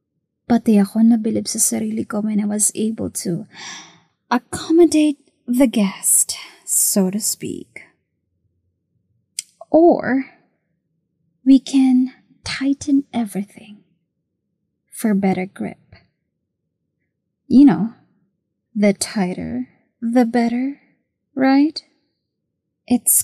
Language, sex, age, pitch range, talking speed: Filipino, female, 20-39, 195-255 Hz, 85 wpm